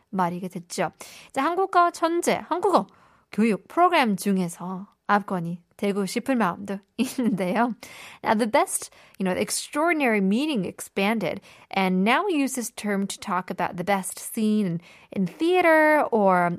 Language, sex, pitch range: Korean, female, 185-250 Hz